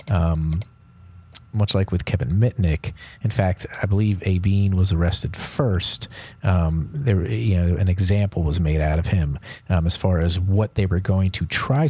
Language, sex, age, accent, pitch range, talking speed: English, male, 30-49, American, 90-105 Hz, 180 wpm